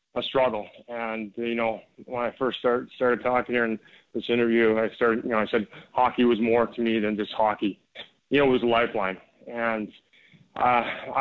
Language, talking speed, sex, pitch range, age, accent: English, 200 wpm, male, 110-125 Hz, 20-39, American